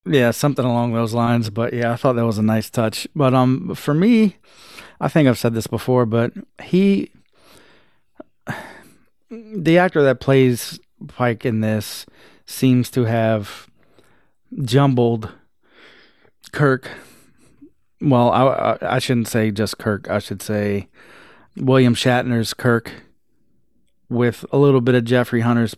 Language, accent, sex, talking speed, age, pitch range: English, American, male, 135 wpm, 30-49, 110-130 Hz